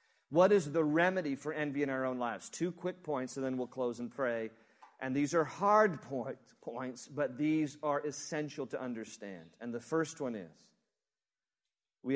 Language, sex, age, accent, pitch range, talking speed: English, male, 40-59, American, 135-185 Hz, 180 wpm